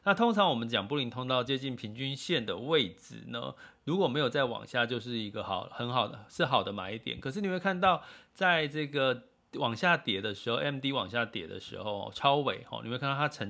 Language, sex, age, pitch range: Chinese, male, 30-49, 115-155 Hz